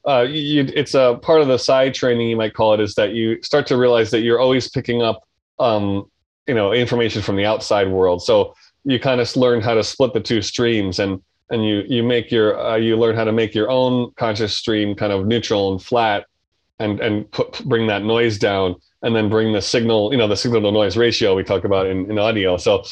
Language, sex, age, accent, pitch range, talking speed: English, male, 20-39, American, 105-125 Hz, 235 wpm